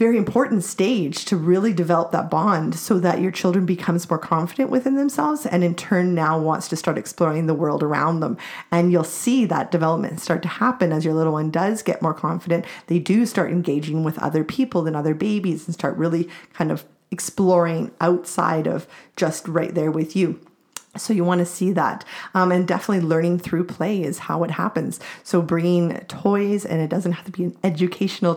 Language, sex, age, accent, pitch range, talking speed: English, female, 30-49, American, 165-195 Hz, 200 wpm